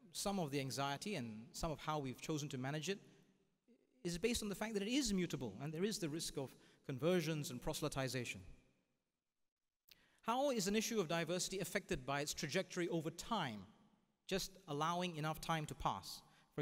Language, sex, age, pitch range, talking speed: English, male, 30-49, 145-195 Hz, 180 wpm